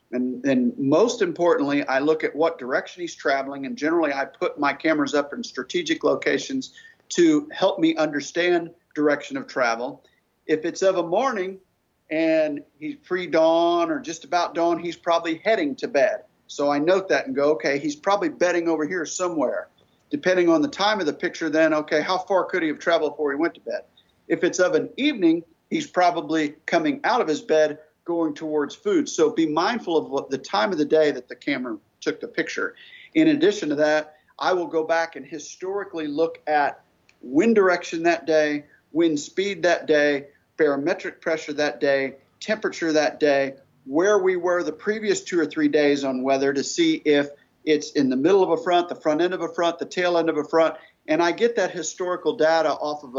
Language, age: English, 50-69